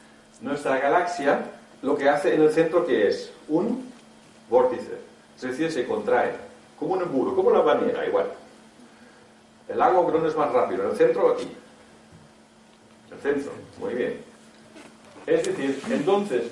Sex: male